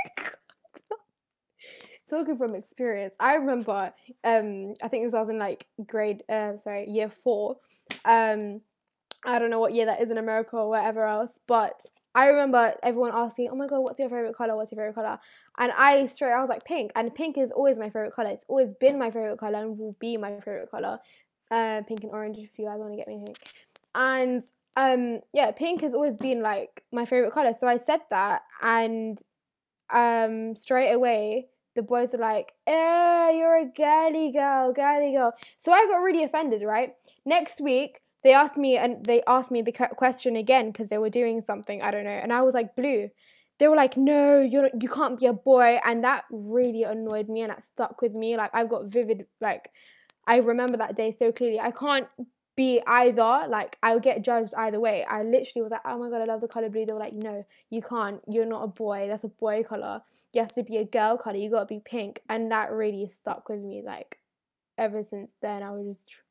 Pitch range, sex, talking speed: 220-260 Hz, female, 215 wpm